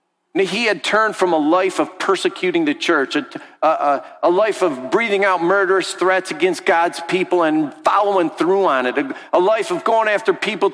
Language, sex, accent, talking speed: English, male, American, 185 wpm